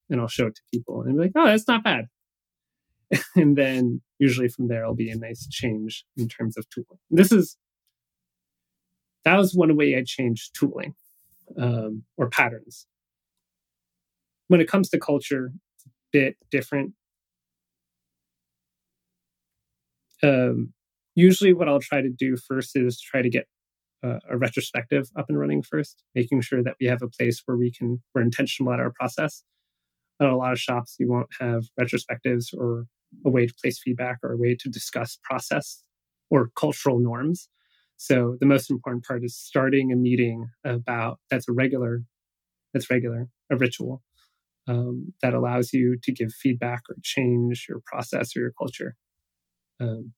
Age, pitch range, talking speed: 30-49, 110-130 Hz, 165 wpm